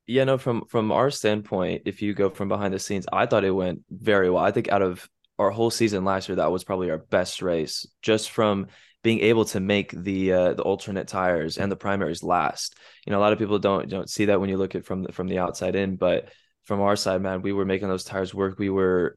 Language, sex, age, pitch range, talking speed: English, male, 20-39, 95-110 Hz, 255 wpm